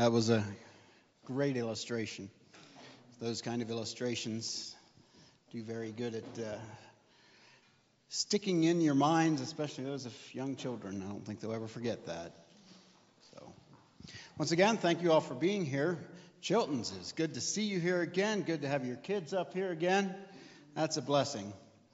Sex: male